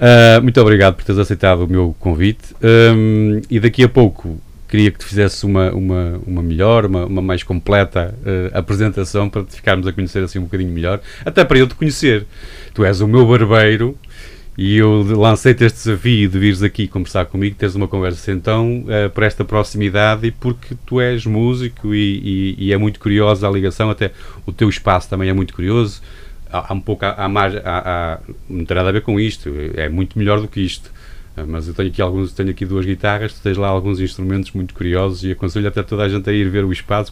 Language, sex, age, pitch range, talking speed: Portuguese, male, 30-49, 95-110 Hz, 210 wpm